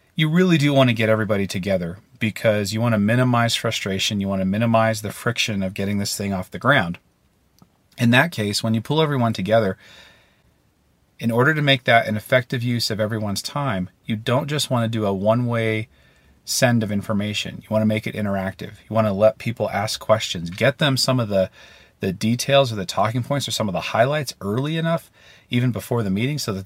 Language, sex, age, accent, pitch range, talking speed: English, male, 40-59, American, 100-130 Hz, 200 wpm